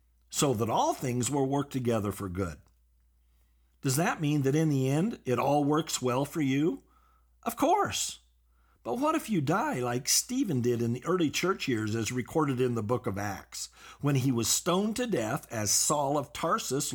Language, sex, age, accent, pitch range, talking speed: English, male, 50-69, American, 110-175 Hz, 190 wpm